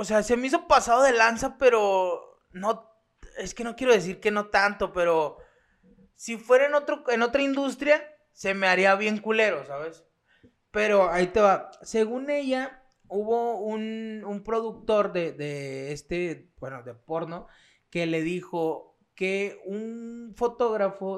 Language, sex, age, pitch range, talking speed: Spanish, male, 20-39, 155-215 Hz, 155 wpm